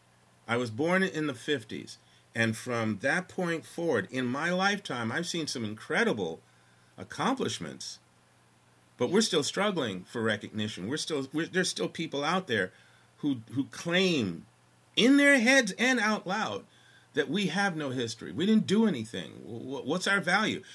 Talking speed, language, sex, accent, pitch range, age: 155 wpm, English, male, American, 115-185 Hz, 50-69